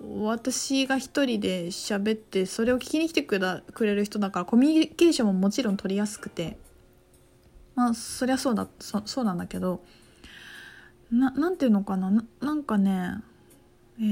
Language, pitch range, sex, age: Japanese, 200-270 Hz, female, 20-39